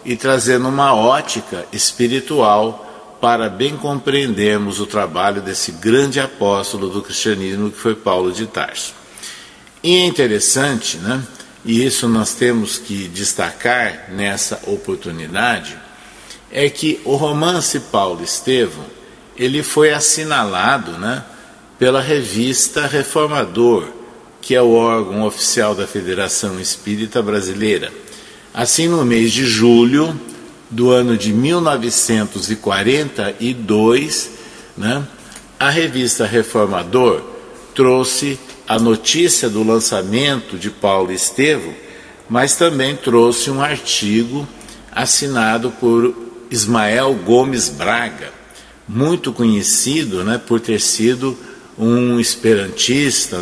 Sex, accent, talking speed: male, Brazilian, 105 wpm